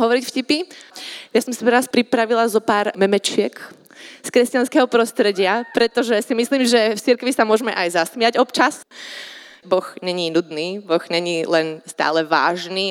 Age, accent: 20-39, native